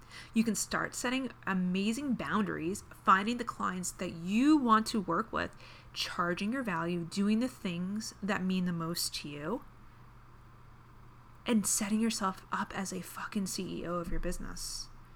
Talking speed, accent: 150 wpm, American